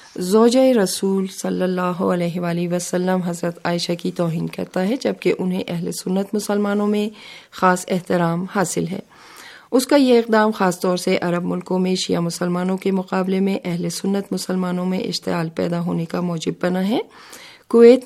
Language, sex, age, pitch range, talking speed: Urdu, female, 40-59, 175-215 Hz, 165 wpm